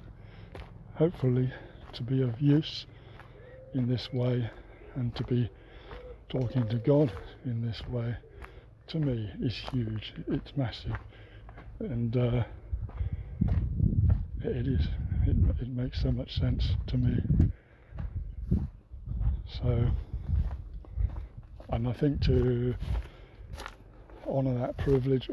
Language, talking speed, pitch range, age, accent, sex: English, 100 wpm, 110-130 Hz, 60-79, British, male